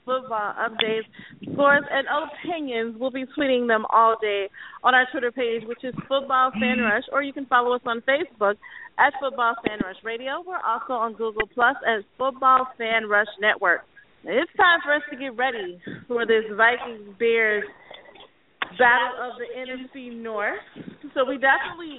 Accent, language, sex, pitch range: American, English, female, 220-265 Hz